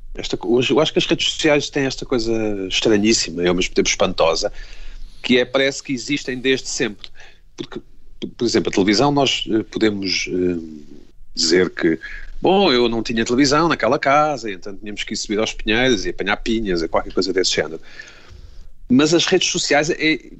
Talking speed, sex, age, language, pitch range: 175 wpm, male, 40-59, Portuguese, 100-145 Hz